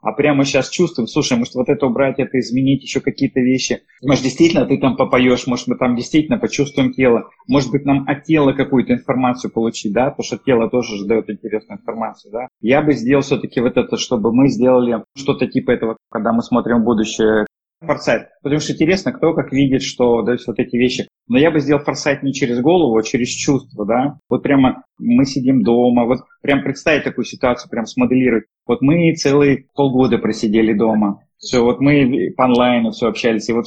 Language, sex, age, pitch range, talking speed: Russian, male, 30-49, 120-140 Hz, 195 wpm